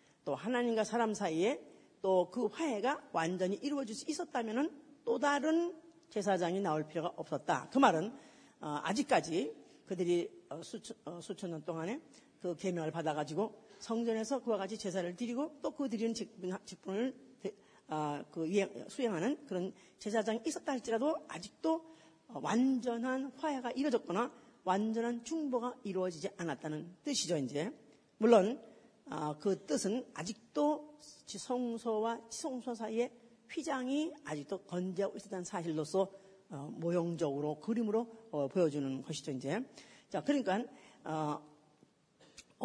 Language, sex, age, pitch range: Korean, female, 40-59, 180-260 Hz